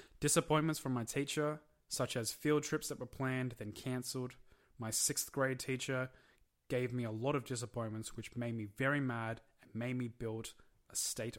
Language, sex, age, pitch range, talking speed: English, male, 20-39, 110-130 Hz, 180 wpm